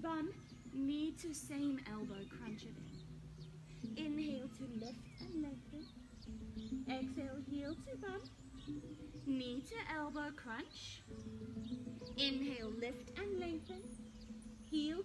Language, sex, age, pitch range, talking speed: English, female, 30-49, 215-325 Hz, 100 wpm